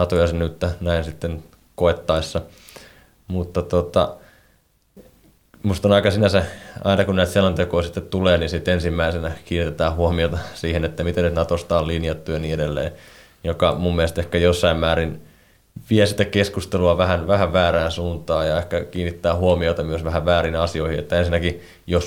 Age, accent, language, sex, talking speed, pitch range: 20-39, native, Finnish, male, 150 wpm, 85-90 Hz